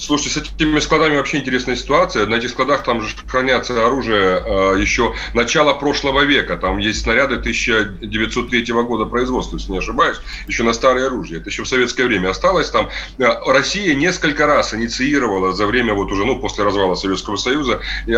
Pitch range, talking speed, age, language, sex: 115-155 Hz, 170 wpm, 30-49, Russian, male